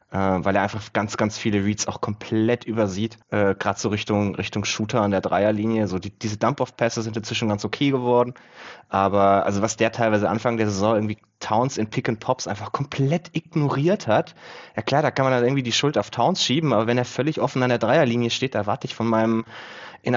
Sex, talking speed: male, 220 wpm